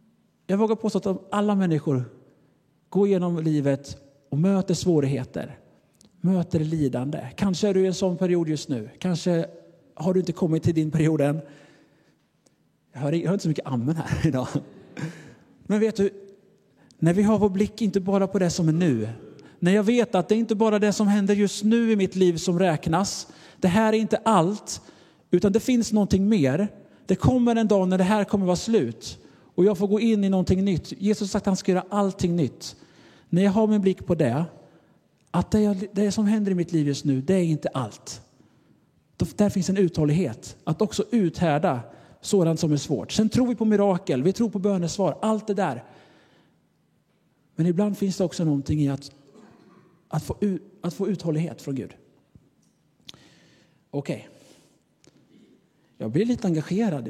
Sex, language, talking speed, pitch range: male, Swedish, 185 wpm, 155-205 Hz